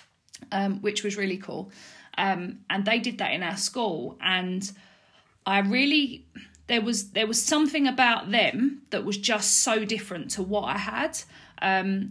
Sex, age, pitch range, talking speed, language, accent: female, 40-59, 195-225 Hz, 165 wpm, English, British